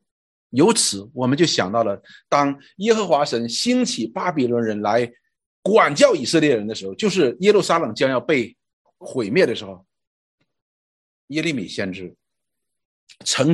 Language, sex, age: Chinese, male, 50-69